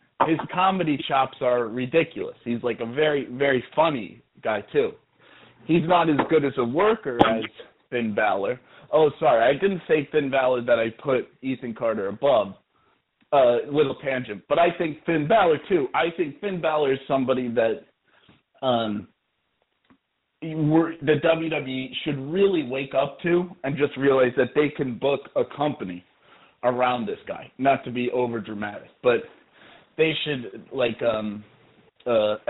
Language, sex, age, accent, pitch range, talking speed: English, male, 30-49, American, 125-160 Hz, 155 wpm